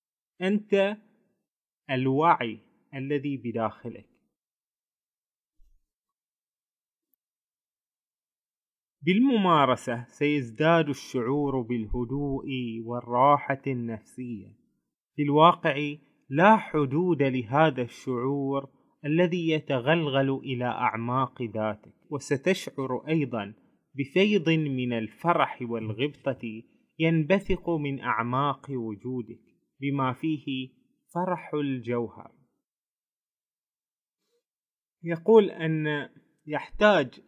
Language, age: Arabic, 30-49